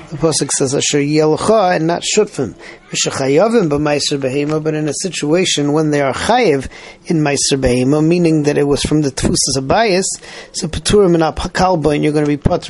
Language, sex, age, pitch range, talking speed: English, male, 40-59, 145-175 Hz, 145 wpm